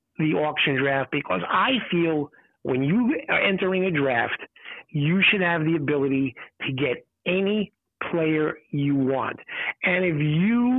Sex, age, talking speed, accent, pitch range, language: male, 50-69, 145 wpm, American, 150-195 Hz, English